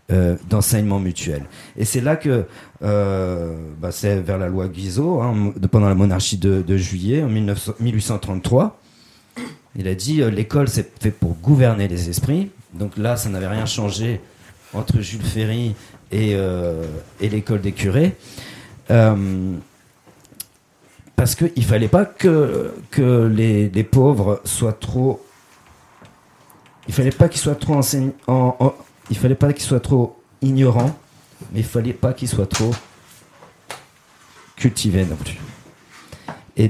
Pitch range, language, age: 100-135 Hz, French, 50-69